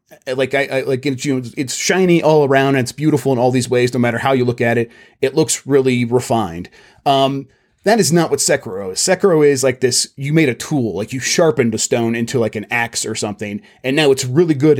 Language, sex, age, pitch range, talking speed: English, male, 30-49, 120-150 Hz, 245 wpm